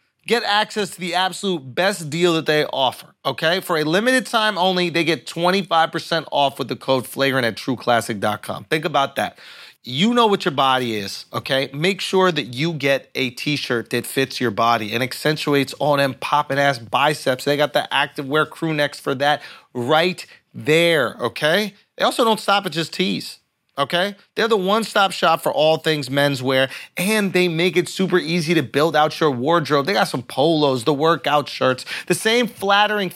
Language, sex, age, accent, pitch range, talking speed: English, male, 30-49, American, 145-200 Hz, 185 wpm